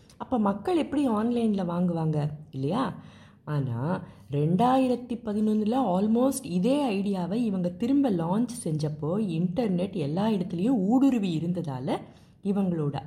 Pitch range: 160-230 Hz